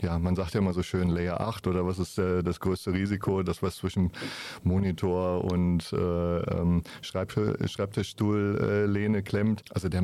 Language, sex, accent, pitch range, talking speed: German, male, German, 90-105 Hz, 160 wpm